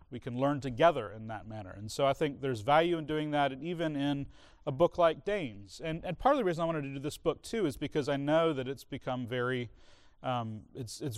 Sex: male